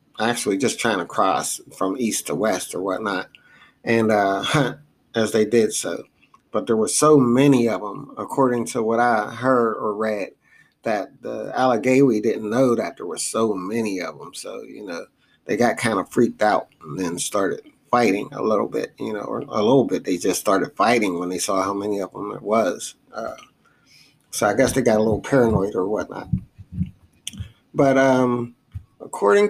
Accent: American